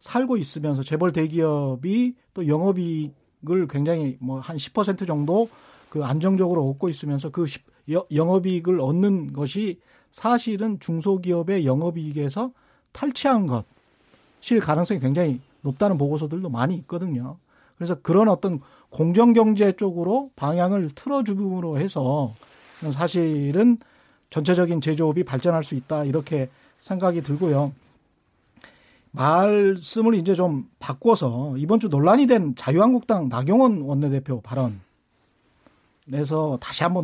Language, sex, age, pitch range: Korean, male, 40-59, 145-205 Hz